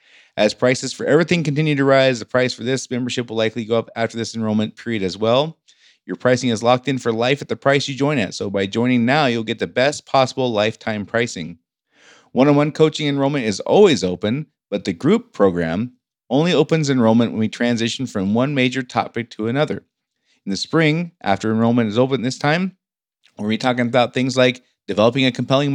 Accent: American